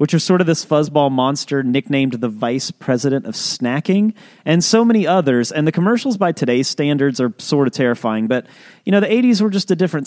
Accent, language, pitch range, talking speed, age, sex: American, English, 130-190 Hz, 215 wpm, 30-49, male